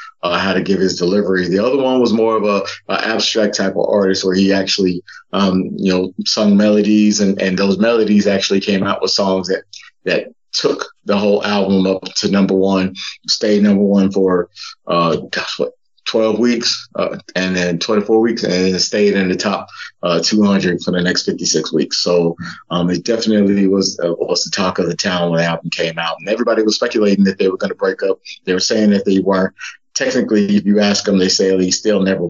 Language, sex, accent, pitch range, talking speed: English, male, American, 95-105 Hz, 225 wpm